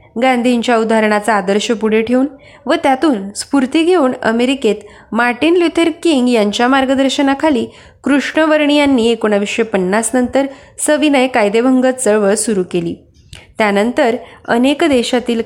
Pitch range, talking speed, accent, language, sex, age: 215-270 Hz, 100 wpm, native, Marathi, female, 20-39